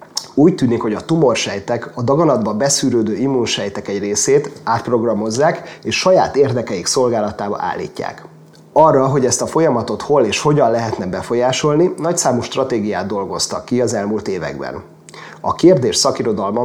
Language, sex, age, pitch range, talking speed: Hungarian, male, 30-49, 110-135 Hz, 135 wpm